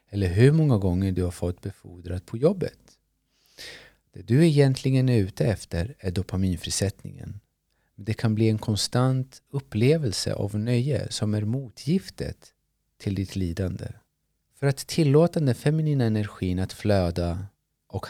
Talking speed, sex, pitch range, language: 135 wpm, male, 95-130 Hz, Swedish